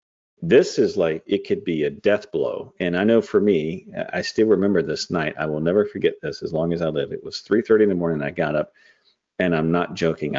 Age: 40-59